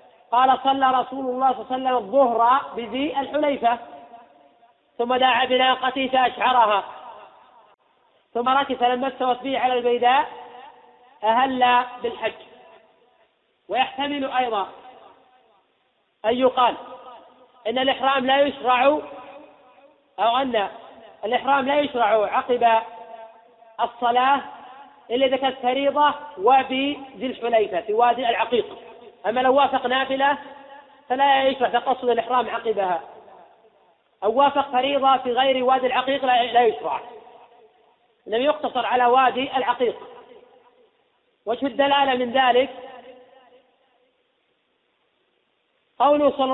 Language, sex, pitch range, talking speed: Arabic, female, 235-270 Hz, 100 wpm